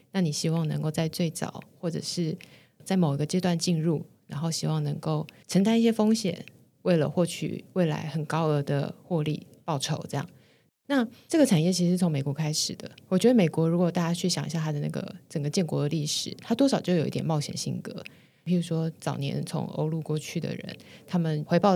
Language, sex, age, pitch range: Chinese, female, 20-39, 155-185 Hz